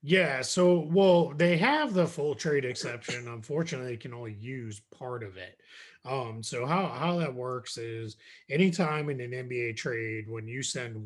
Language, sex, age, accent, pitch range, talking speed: English, male, 30-49, American, 115-145 Hz, 175 wpm